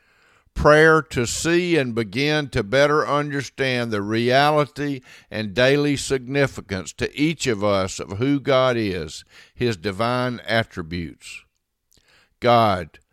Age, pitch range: 50-69, 115-145 Hz